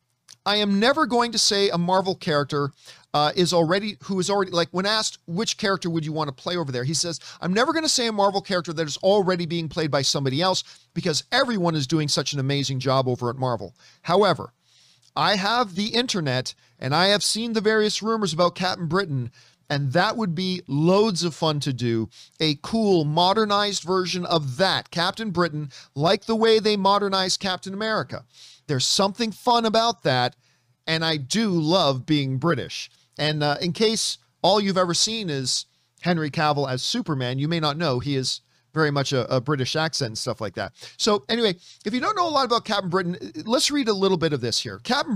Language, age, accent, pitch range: English, 40-59, American, 145-200 Hz